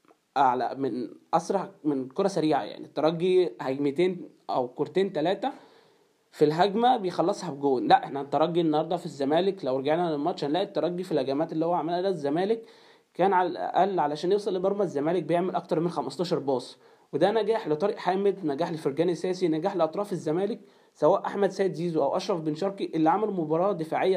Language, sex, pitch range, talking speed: Arabic, male, 145-190 Hz, 170 wpm